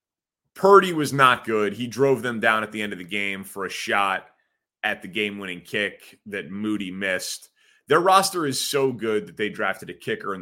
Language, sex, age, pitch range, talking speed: English, male, 30-49, 105-135 Hz, 200 wpm